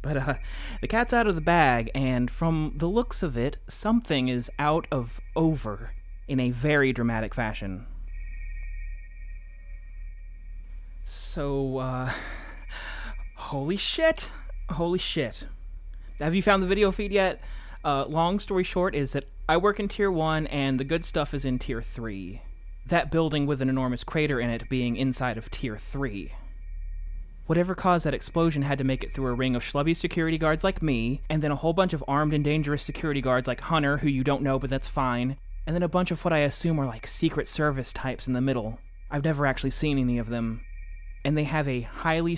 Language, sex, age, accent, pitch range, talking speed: English, male, 30-49, American, 110-155 Hz, 190 wpm